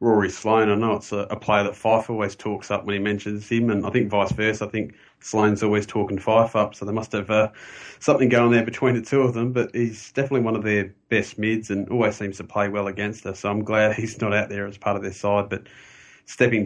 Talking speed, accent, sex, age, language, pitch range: 265 wpm, Australian, male, 30-49, English, 100-115 Hz